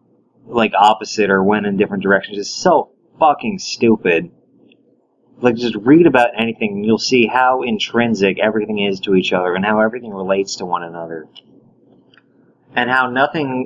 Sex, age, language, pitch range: male, 30-49, English, 105-140 Hz